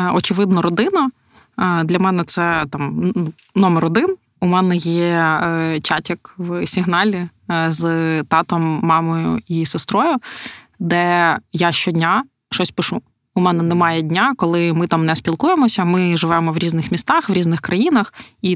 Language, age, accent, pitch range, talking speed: Ukrainian, 20-39, native, 165-190 Hz, 135 wpm